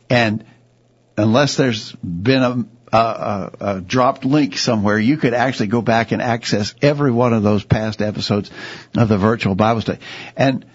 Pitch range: 105-125 Hz